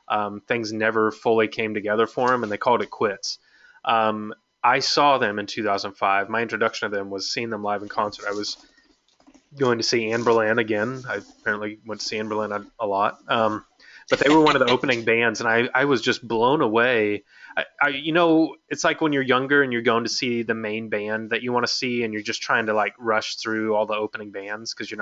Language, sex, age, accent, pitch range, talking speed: English, male, 20-39, American, 105-125 Hz, 235 wpm